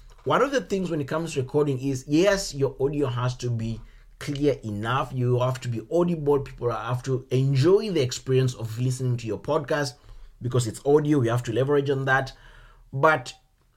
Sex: male